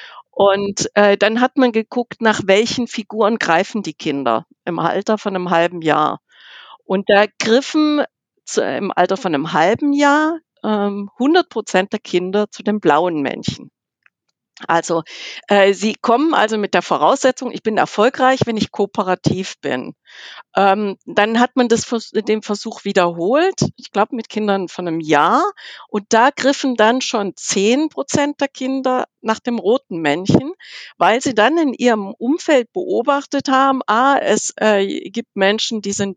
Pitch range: 195-250 Hz